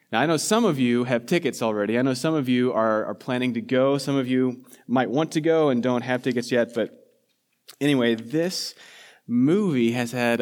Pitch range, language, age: 115-140 Hz, English, 30-49